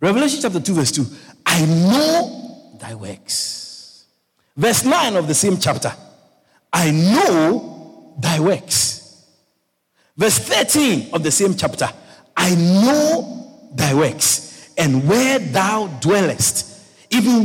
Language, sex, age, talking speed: English, male, 50-69, 115 wpm